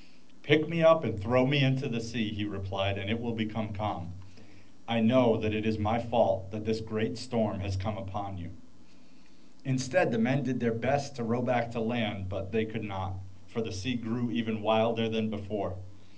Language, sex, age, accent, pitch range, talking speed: English, male, 40-59, American, 100-130 Hz, 200 wpm